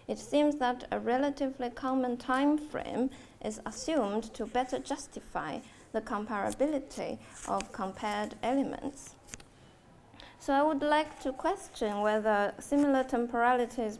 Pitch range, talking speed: 210-265 Hz, 115 wpm